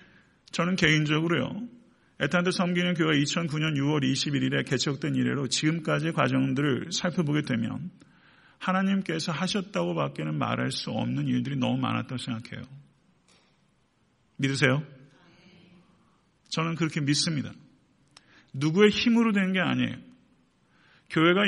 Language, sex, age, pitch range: Korean, male, 40-59, 135-190 Hz